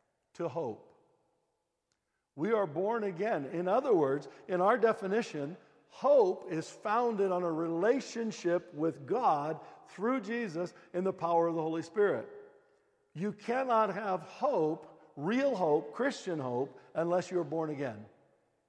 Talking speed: 130 wpm